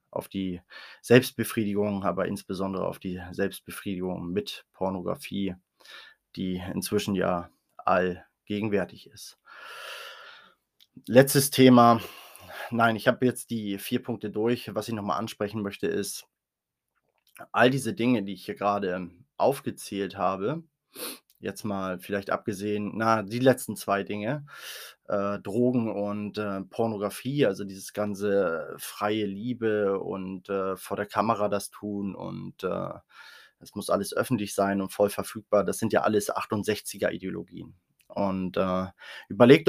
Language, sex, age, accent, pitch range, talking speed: German, male, 20-39, German, 100-115 Hz, 130 wpm